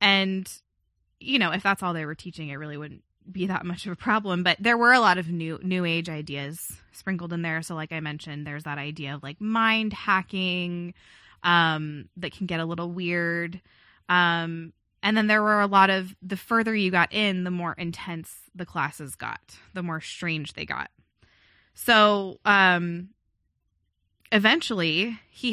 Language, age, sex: English, 20-39, female